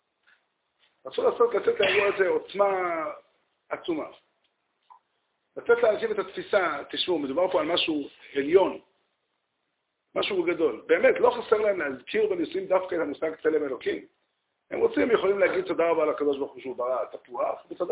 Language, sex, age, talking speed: Hebrew, male, 50-69, 145 wpm